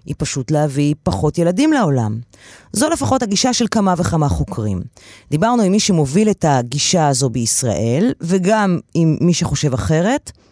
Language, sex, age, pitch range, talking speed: Hebrew, female, 30-49, 150-215 Hz, 150 wpm